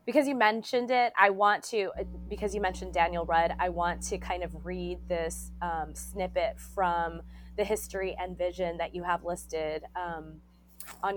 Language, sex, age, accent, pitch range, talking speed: English, female, 20-39, American, 170-200 Hz, 170 wpm